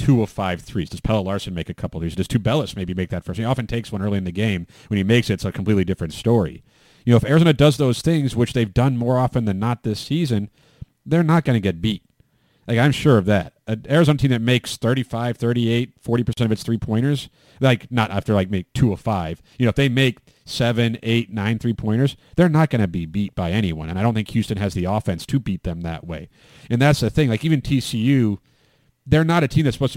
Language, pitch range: English, 105-135 Hz